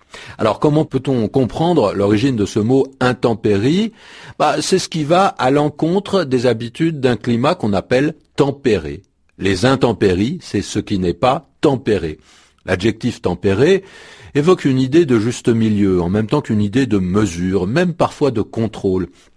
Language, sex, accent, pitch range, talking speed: French, male, French, 95-145 Hz, 175 wpm